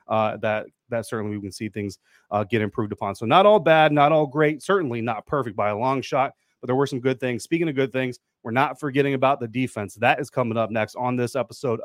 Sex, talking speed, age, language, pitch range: male, 255 wpm, 30-49, English, 115-145 Hz